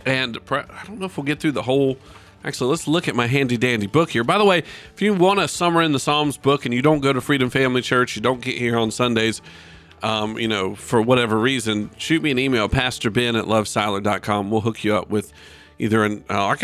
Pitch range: 115-150 Hz